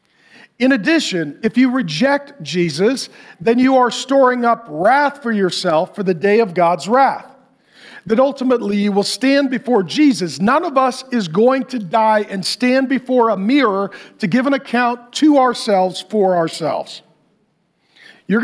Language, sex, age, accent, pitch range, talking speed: English, male, 40-59, American, 195-265 Hz, 155 wpm